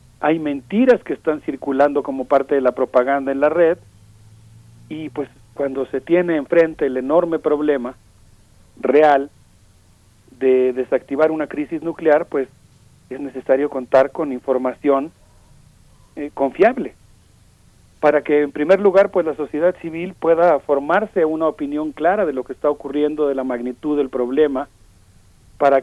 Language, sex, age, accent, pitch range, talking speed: Spanish, male, 40-59, Mexican, 125-155 Hz, 140 wpm